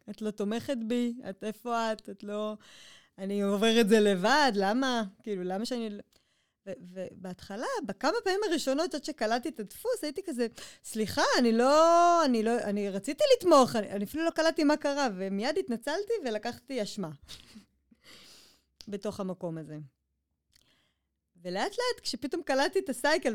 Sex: female